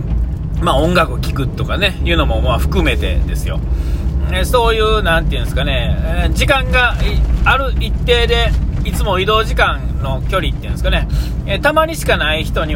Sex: male